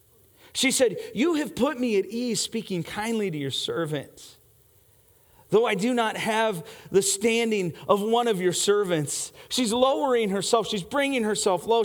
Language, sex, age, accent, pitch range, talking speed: English, male, 40-59, American, 160-245 Hz, 160 wpm